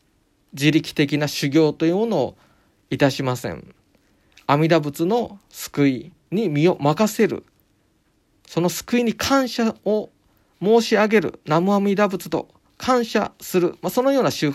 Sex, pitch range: male, 130-195 Hz